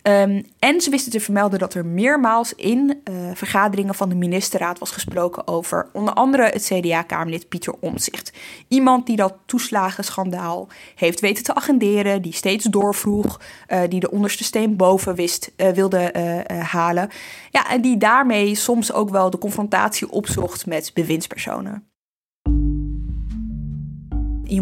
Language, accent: Dutch, Dutch